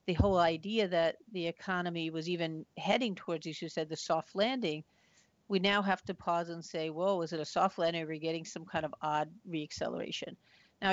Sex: female